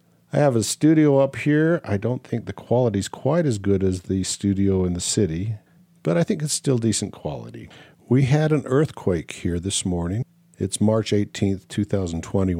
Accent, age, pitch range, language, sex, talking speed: American, 50-69, 95-140 Hz, English, male, 185 wpm